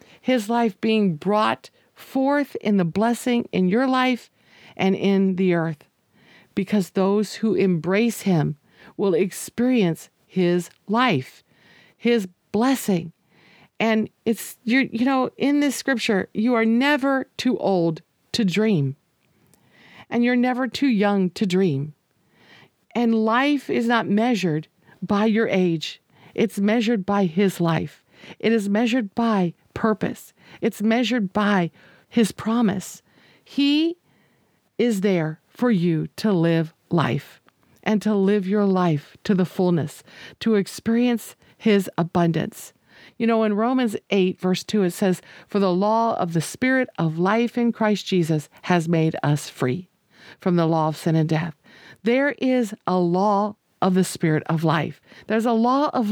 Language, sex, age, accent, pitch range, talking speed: English, female, 50-69, American, 175-230 Hz, 145 wpm